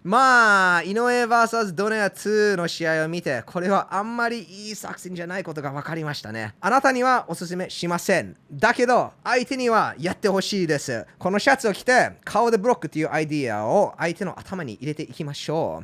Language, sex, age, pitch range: Japanese, male, 20-39, 130-210 Hz